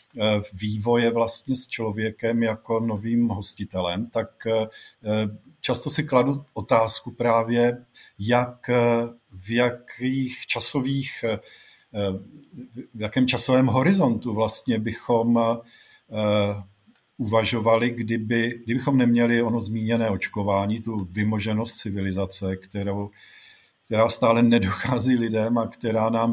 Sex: male